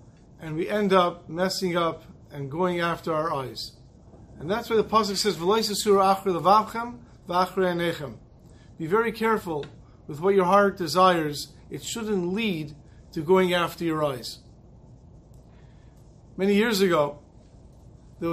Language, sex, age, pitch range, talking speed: English, male, 40-59, 165-205 Hz, 120 wpm